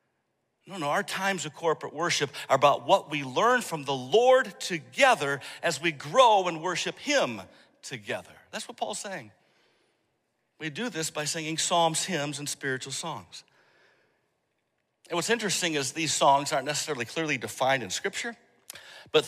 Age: 60-79